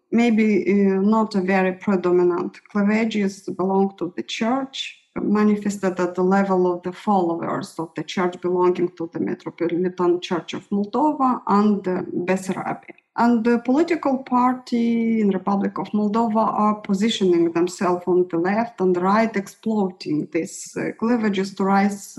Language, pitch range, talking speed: English, 180-225 Hz, 145 wpm